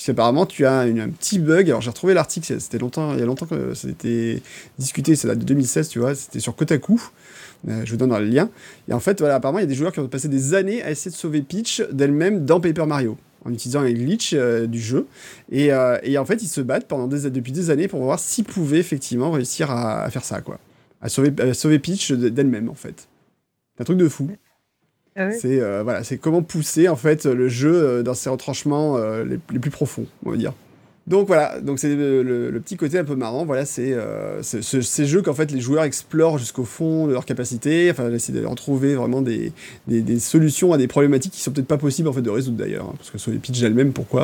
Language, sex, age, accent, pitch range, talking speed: French, male, 30-49, French, 125-160 Hz, 250 wpm